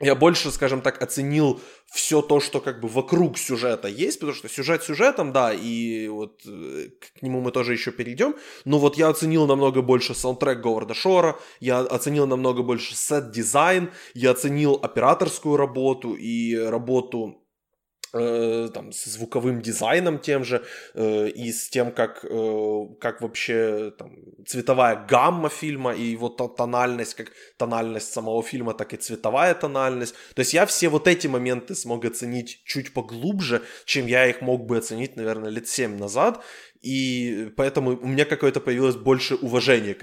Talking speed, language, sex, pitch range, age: 155 wpm, Ukrainian, male, 115-145 Hz, 20-39